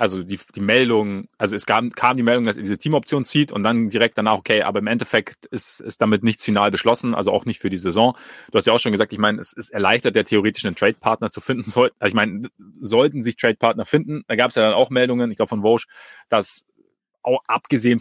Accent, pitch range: German, 110-135 Hz